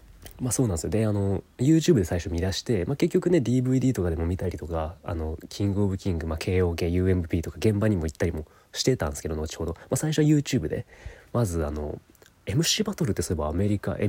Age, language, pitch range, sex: 30-49, Japanese, 85-130 Hz, male